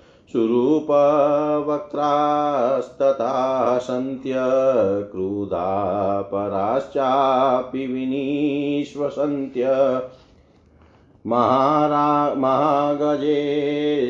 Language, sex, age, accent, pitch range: Hindi, male, 50-69, native, 125-145 Hz